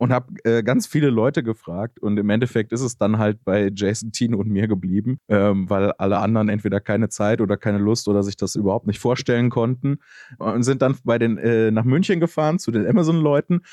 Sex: male